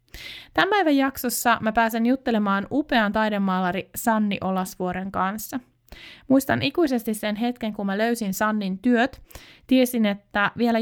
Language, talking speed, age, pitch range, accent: Finnish, 130 wpm, 20-39, 185-225 Hz, native